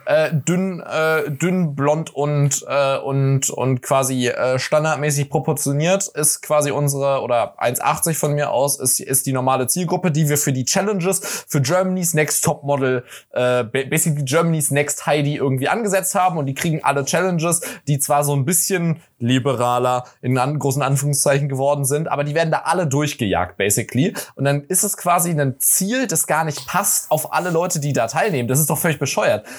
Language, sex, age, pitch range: German, male, 20-39, 130-155 Hz